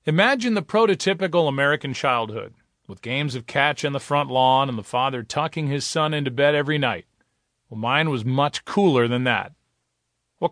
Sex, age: male, 40-59